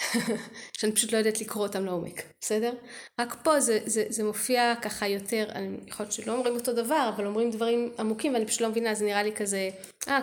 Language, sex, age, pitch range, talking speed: Hebrew, female, 30-49, 200-240 Hz, 195 wpm